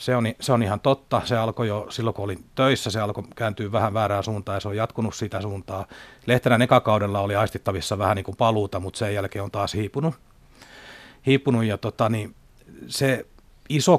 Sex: male